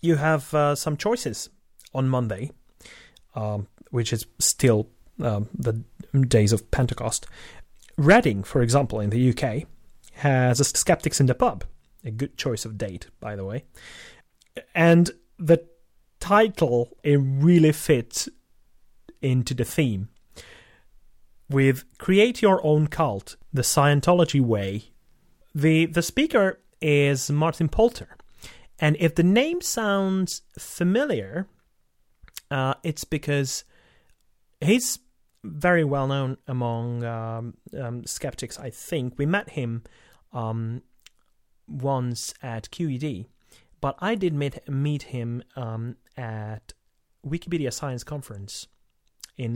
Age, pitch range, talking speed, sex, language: 30-49, 115-160 Hz, 115 wpm, male, English